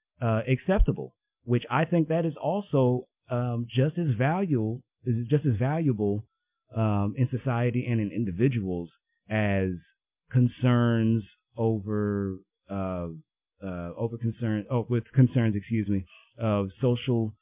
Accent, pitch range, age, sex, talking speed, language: American, 100-130 Hz, 30-49, male, 125 wpm, English